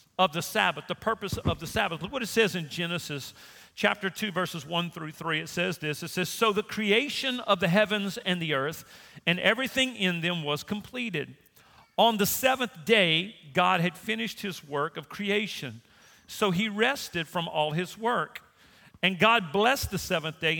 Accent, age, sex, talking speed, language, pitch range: American, 50-69, male, 185 wpm, English, 170-220 Hz